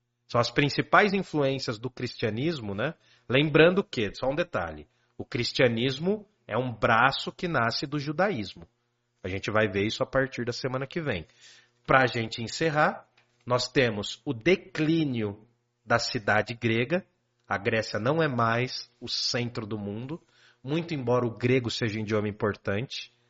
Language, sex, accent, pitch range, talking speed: Portuguese, male, Brazilian, 115-140 Hz, 155 wpm